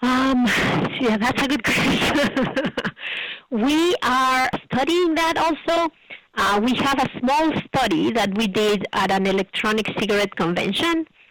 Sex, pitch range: female, 190-245 Hz